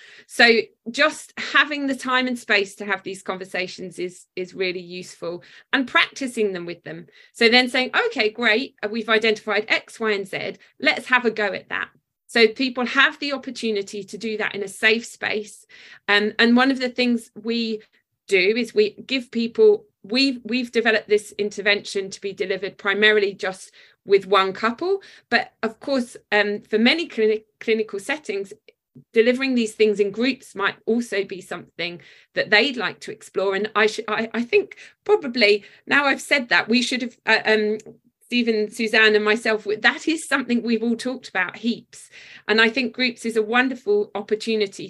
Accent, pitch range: British, 205-245 Hz